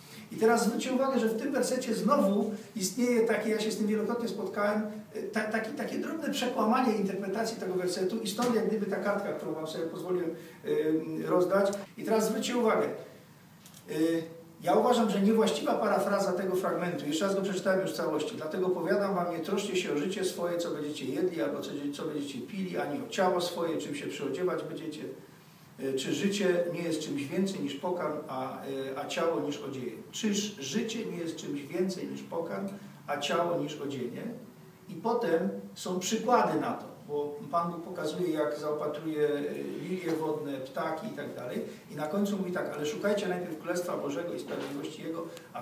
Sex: male